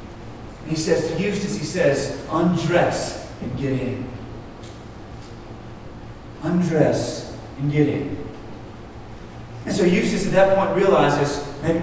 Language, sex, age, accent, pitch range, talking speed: English, male, 40-59, American, 160-230 Hz, 115 wpm